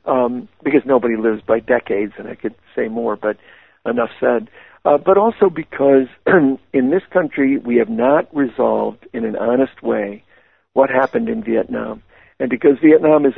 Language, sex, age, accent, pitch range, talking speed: English, male, 60-79, American, 125-155 Hz, 165 wpm